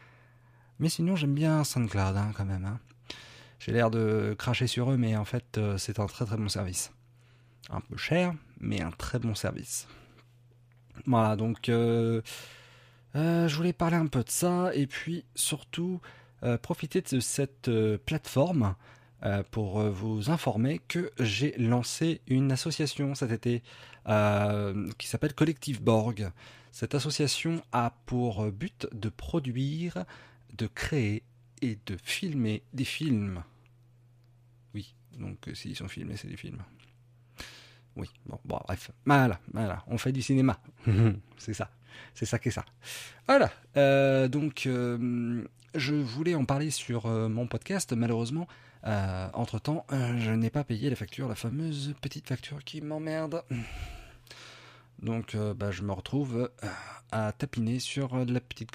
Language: French